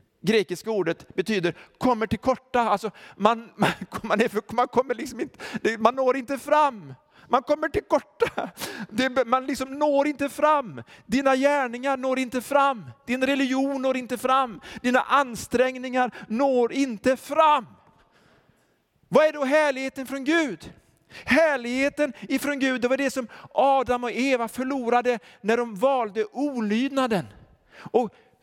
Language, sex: Swedish, male